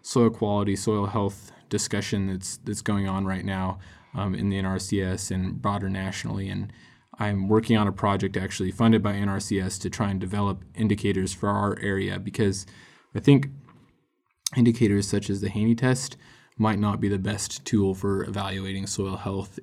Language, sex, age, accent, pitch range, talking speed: English, male, 20-39, American, 95-105 Hz, 170 wpm